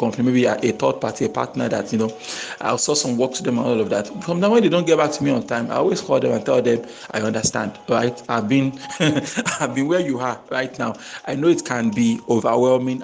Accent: Nigerian